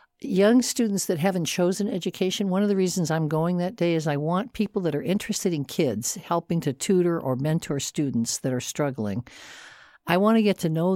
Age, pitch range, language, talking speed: 60-79, 155-205 Hz, English, 210 wpm